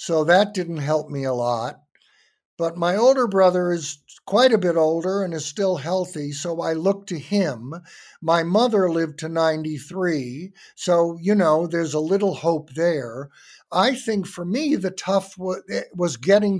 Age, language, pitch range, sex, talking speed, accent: 60-79, English, 150-195 Hz, male, 165 wpm, American